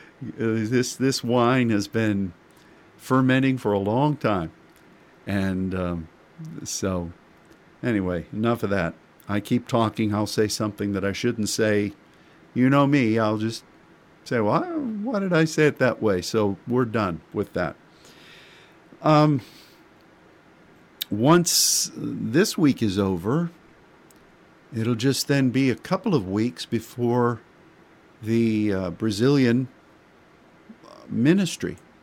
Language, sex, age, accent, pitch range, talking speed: English, male, 50-69, American, 100-130 Hz, 125 wpm